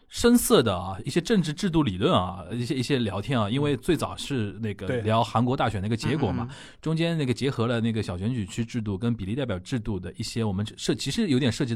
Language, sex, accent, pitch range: Chinese, male, native, 105-145 Hz